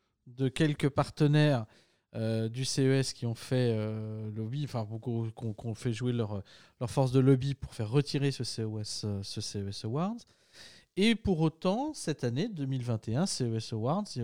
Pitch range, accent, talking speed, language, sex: 115-155 Hz, French, 165 wpm, French, male